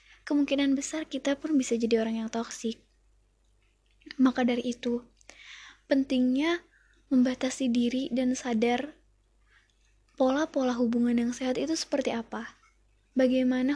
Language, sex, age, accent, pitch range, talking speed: Indonesian, female, 20-39, native, 240-285 Hz, 110 wpm